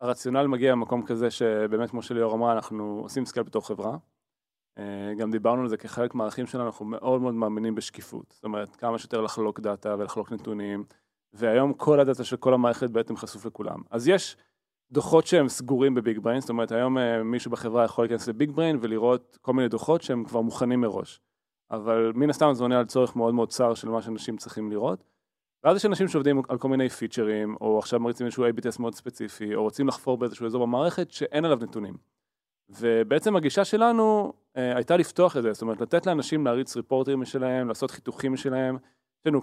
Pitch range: 115-135 Hz